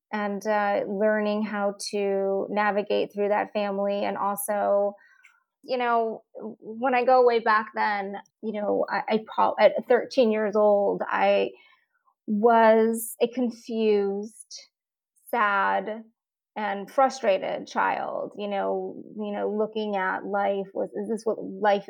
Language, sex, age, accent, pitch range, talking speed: English, female, 30-49, American, 205-235 Hz, 130 wpm